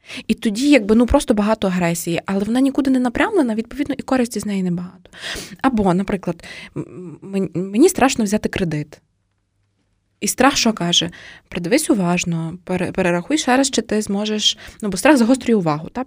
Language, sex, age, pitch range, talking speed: Ukrainian, female, 20-39, 185-245 Hz, 155 wpm